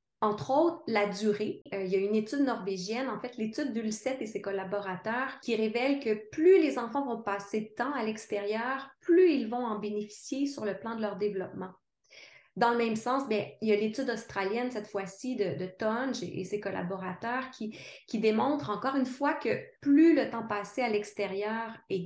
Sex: female